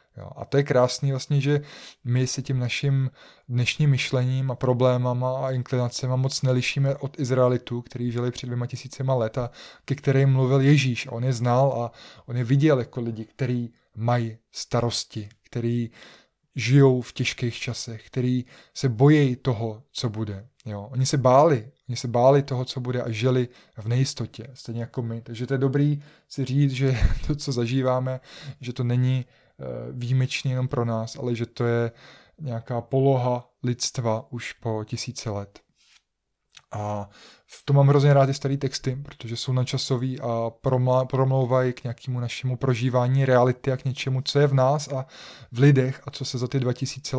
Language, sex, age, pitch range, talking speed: Czech, male, 20-39, 120-135 Hz, 175 wpm